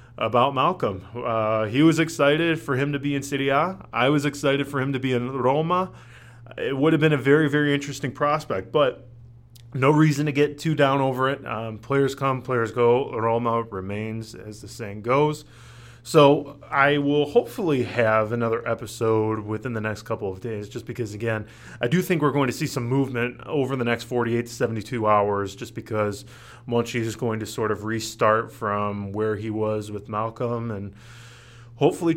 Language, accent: English, American